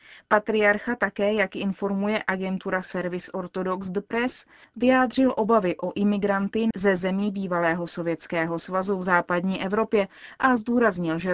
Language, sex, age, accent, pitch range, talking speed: Czech, female, 30-49, native, 180-220 Hz, 120 wpm